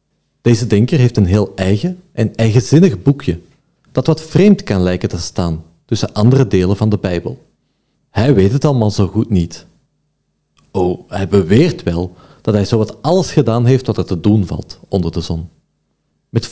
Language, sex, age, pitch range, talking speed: Dutch, male, 40-59, 90-135 Hz, 180 wpm